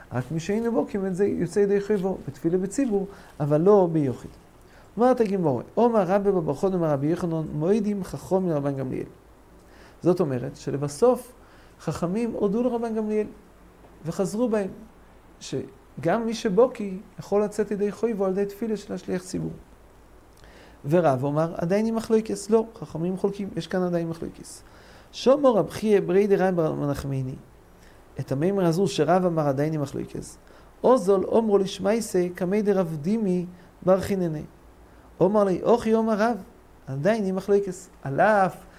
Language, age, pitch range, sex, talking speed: English, 40-59, 155-205 Hz, male, 140 wpm